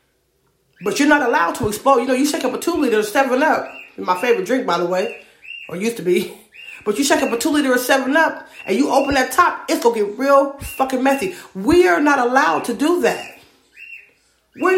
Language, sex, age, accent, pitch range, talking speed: English, female, 40-59, American, 235-320 Hz, 225 wpm